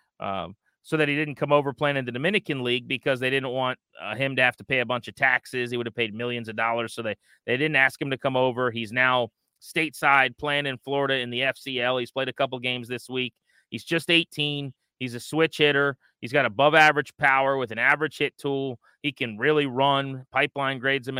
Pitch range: 125-150 Hz